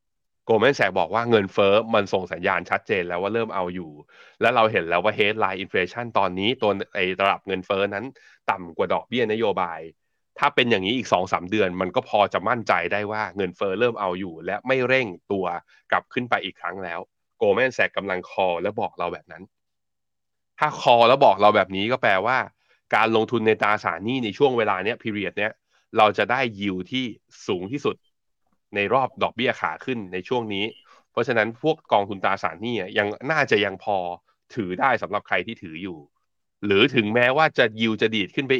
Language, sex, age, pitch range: Thai, male, 20-39, 95-115 Hz